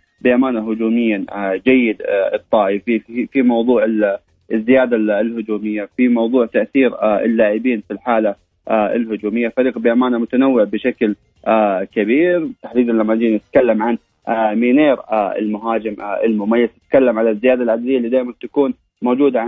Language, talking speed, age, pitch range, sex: Arabic, 115 wpm, 20-39, 110-130 Hz, male